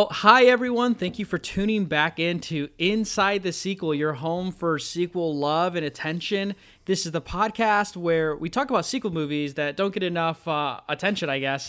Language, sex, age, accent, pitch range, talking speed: English, male, 20-39, American, 145-180 Hz, 190 wpm